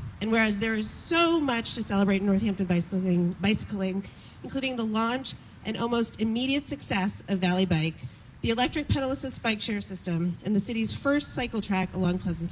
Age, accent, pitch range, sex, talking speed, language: 40-59, American, 195-260 Hz, female, 175 wpm, English